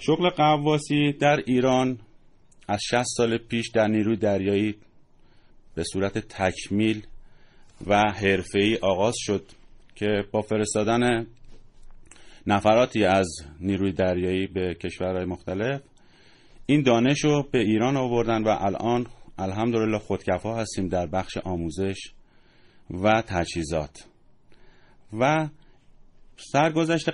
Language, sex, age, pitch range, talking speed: Persian, male, 30-49, 100-125 Hz, 100 wpm